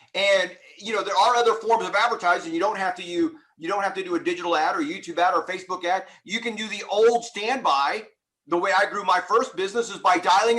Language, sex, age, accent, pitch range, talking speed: English, male, 40-59, American, 180-255 Hz, 250 wpm